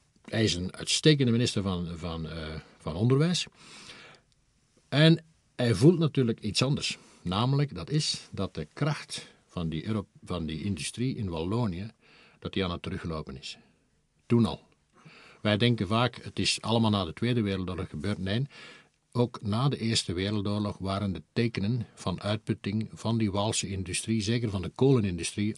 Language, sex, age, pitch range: Dutch, male, 50-69, 95-125 Hz